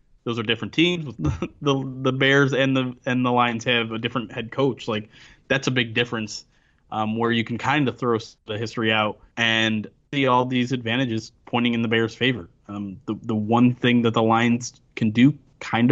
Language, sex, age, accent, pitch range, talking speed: English, male, 20-39, American, 115-130 Hz, 205 wpm